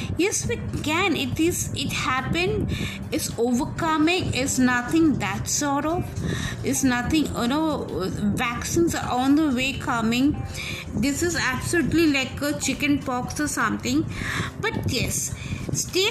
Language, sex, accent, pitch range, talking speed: English, female, Indian, 245-305 Hz, 135 wpm